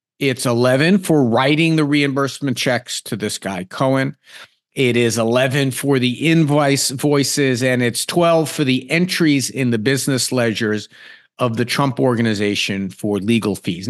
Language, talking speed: English, 150 wpm